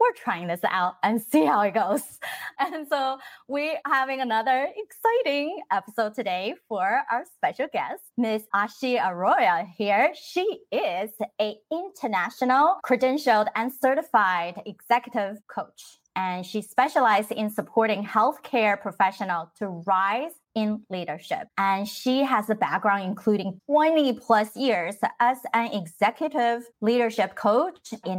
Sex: female